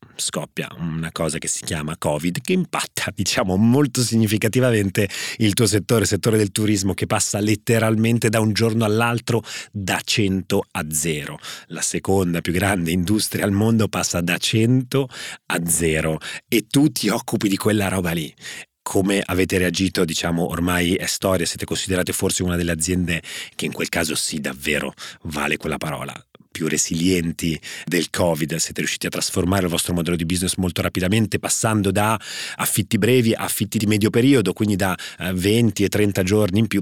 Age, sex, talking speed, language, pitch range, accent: 30-49, male, 170 wpm, Italian, 90-110 Hz, native